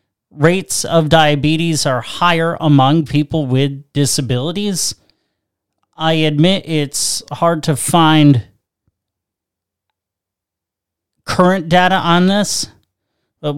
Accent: American